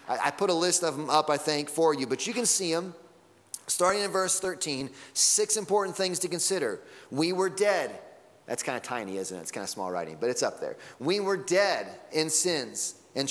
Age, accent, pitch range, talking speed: 30-49, American, 155-190 Hz, 220 wpm